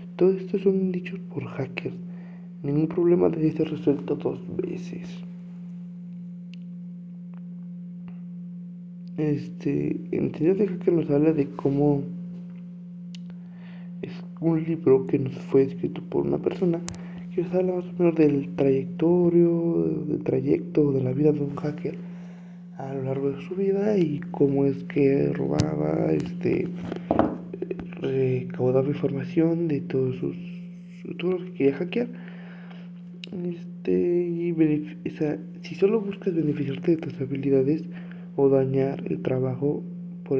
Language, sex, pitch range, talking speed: Spanish, male, 145-175 Hz, 130 wpm